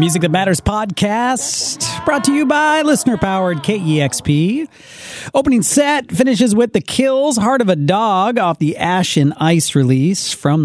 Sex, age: male, 40-59